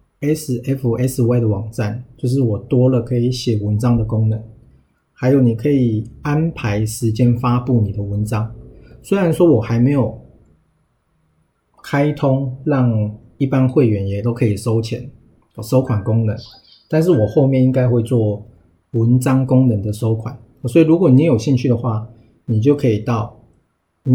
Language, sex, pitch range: Chinese, male, 110-130 Hz